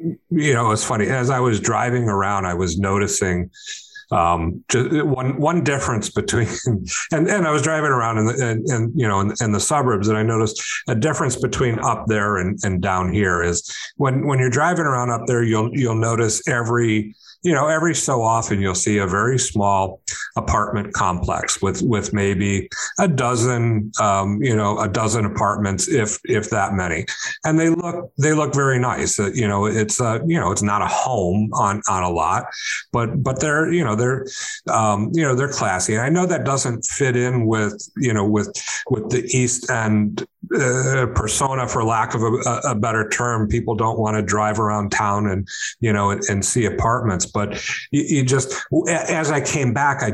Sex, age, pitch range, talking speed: male, 50-69, 100-130 Hz, 200 wpm